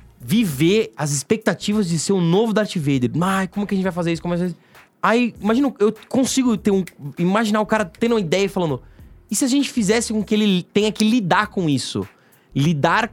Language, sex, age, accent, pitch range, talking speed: Portuguese, male, 20-39, Brazilian, 145-215 Hz, 200 wpm